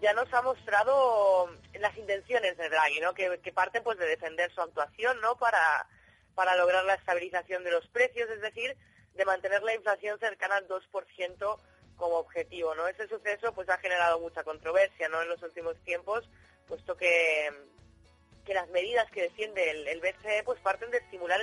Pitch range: 175-220 Hz